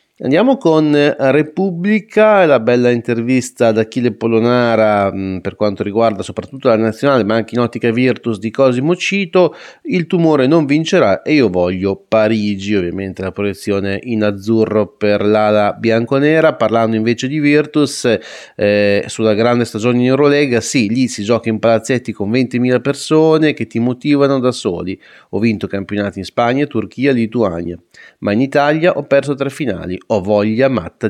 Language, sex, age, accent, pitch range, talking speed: Italian, male, 30-49, native, 105-130 Hz, 155 wpm